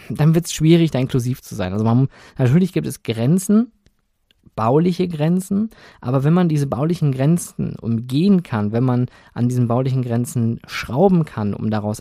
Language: German